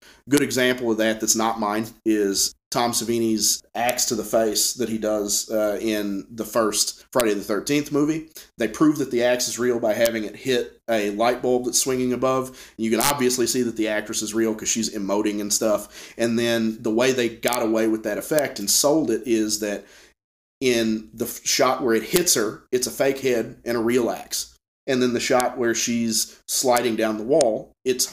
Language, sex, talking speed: English, male, 205 wpm